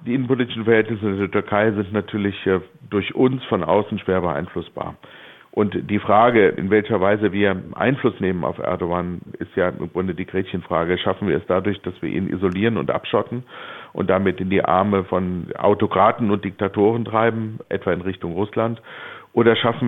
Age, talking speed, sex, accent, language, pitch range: 60-79, 170 wpm, male, German, German, 95-110 Hz